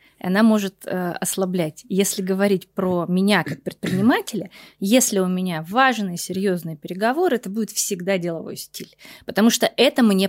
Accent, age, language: native, 20-39, Russian